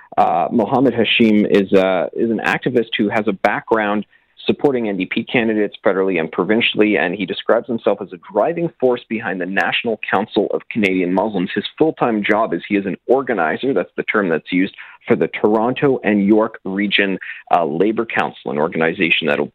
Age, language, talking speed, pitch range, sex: 40-59, English, 180 wpm, 95-120 Hz, male